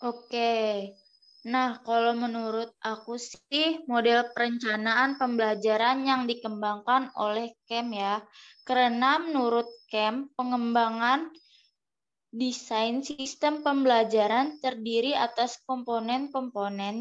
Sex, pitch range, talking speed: female, 225-260 Hz, 90 wpm